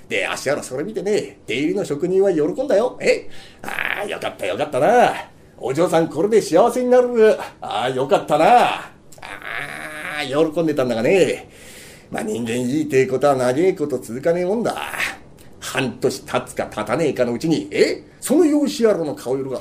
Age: 40-59